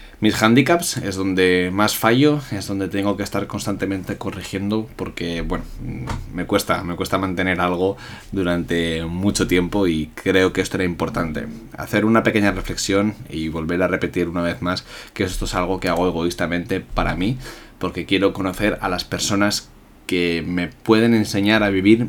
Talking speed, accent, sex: 170 wpm, Spanish, male